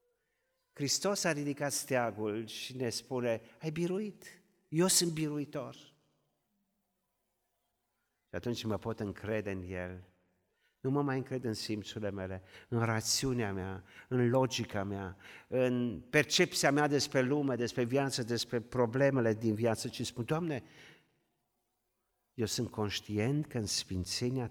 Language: Romanian